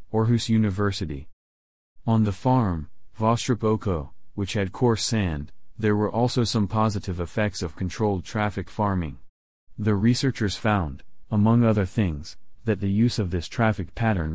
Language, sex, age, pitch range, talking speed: English, male, 40-59, 90-110 Hz, 140 wpm